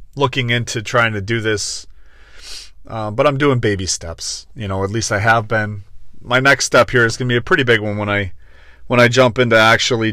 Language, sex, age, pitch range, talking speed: English, male, 30-49, 100-115 Hz, 225 wpm